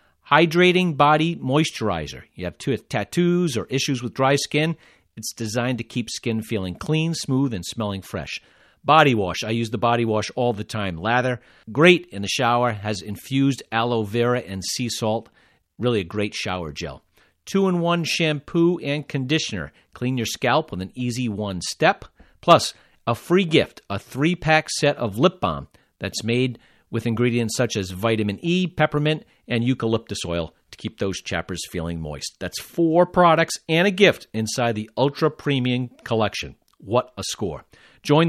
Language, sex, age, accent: English, male, 40-59, American